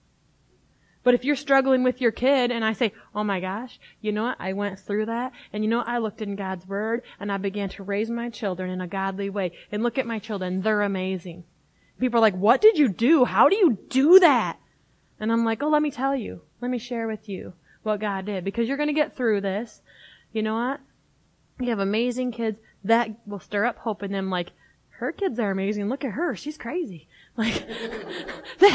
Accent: American